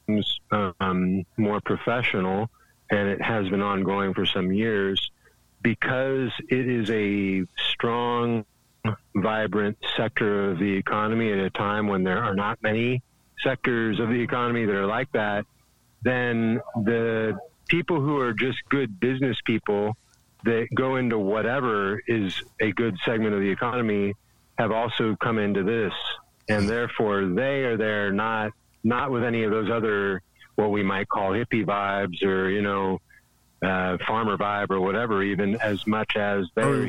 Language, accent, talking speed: English, American, 150 wpm